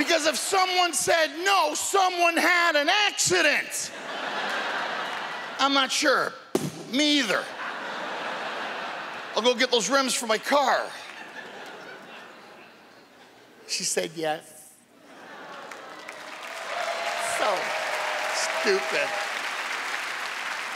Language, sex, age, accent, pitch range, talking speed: English, male, 50-69, American, 185-285 Hz, 80 wpm